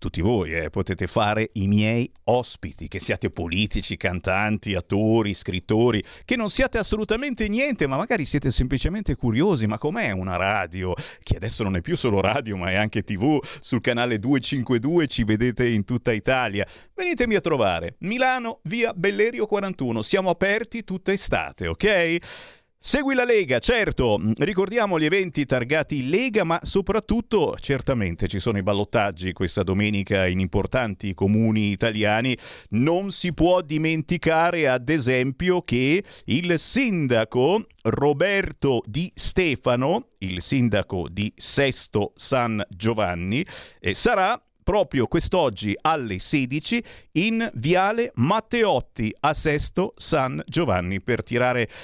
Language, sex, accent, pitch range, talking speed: Italian, male, native, 100-155 Hz, 130 wpm